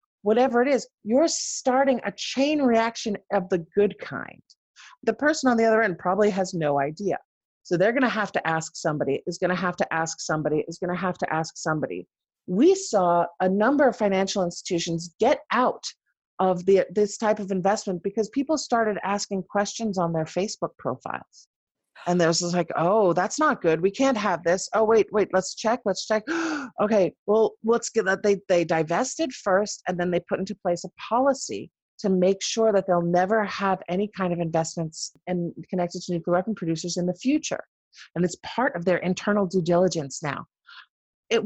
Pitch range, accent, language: 175-230 Hz, American, English